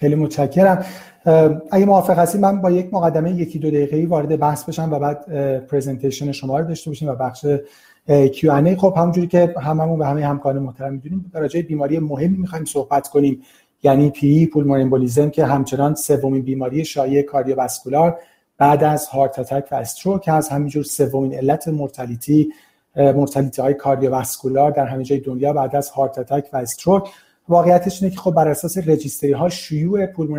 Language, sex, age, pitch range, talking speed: Persian, male, 40-59, 140-165 Hz, 170 wpm